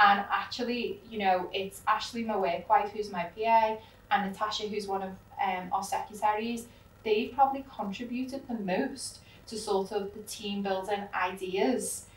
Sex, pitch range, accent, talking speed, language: female, 190-220 Hz, British, 160 wpm, English